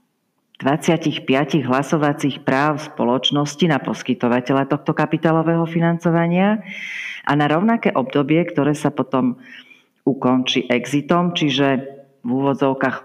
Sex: female